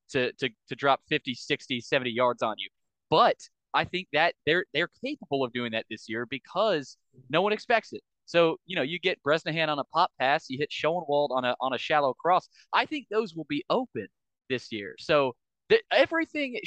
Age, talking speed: 20-39, 200 wpm